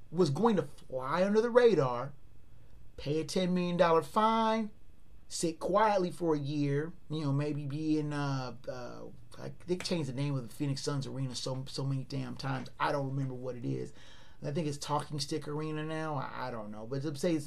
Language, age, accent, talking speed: English, 30-49, American, 205 wpm